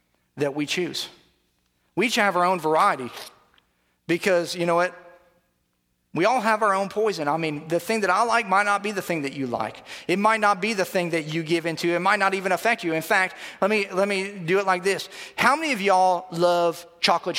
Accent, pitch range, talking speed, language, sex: American, 175-245 Hz, 230 wpm, English, male